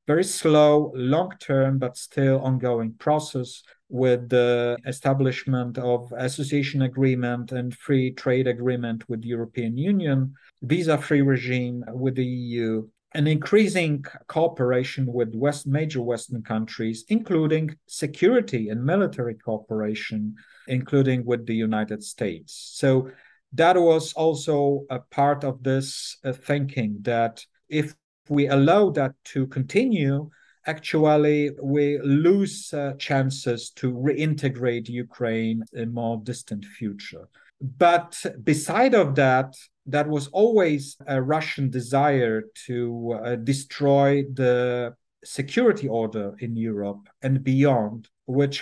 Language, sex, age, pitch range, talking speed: English, male, 50-69, 120-145 Hz, 115 wpm